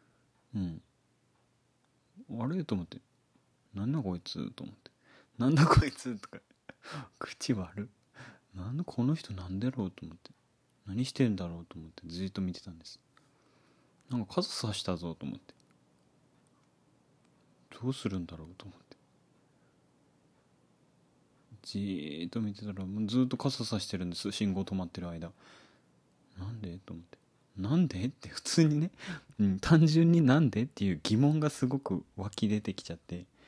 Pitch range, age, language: 90-130 Hz, 30-49, Japanese